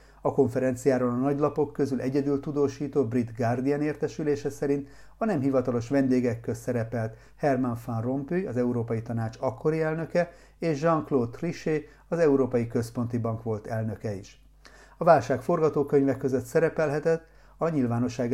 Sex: male